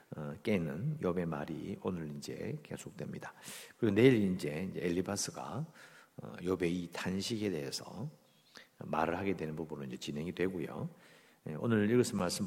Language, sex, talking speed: English, male, 130 wpm